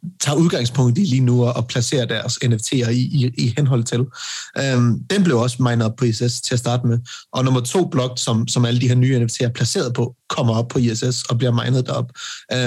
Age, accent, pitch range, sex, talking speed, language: 30-49, native, 120-130 Hz, male, 230 wpm, Danish